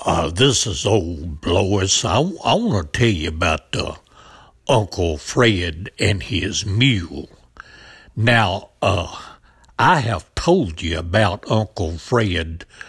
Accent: American